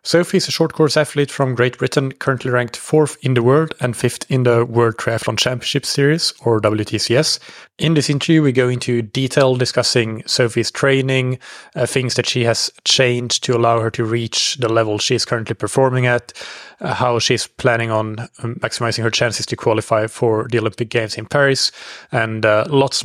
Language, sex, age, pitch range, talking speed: English, male, 30-49, 115-135 Hz, 185 wpm